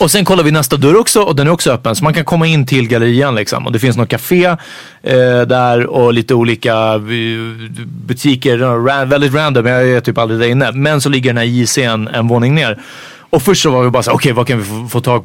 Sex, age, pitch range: male, 30-49, 115-150 Hz